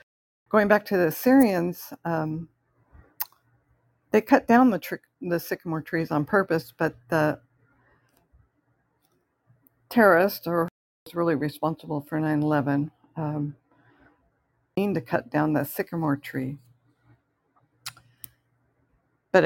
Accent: American